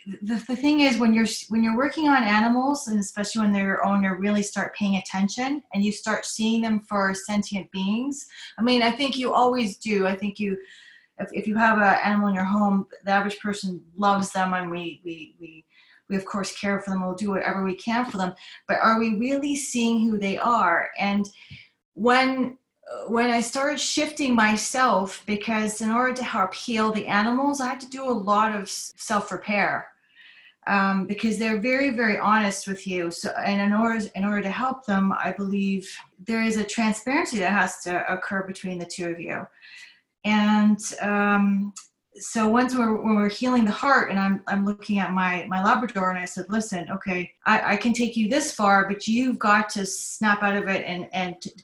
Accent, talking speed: American, 205 wpm